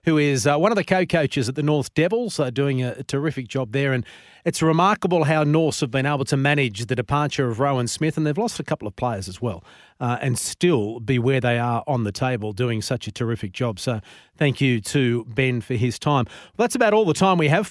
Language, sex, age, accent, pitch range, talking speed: English, male, 40-59, Australian, 130-165 Hz, 245 wpm